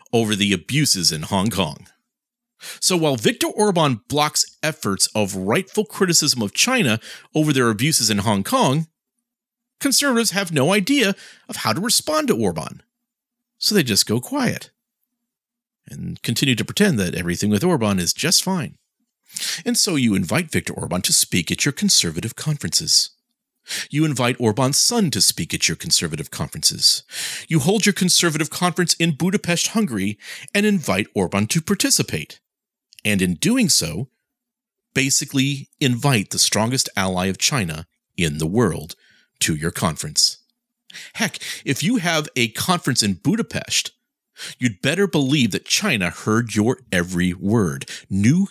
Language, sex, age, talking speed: English, male, 40-59, 145 wpm